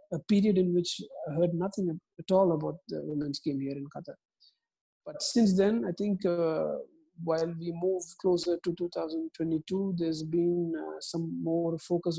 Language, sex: English, male